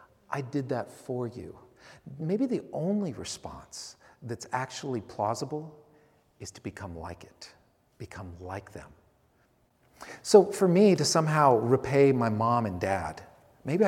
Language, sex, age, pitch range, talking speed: English, male, 50-69, 115-170 Hz, 135 wpm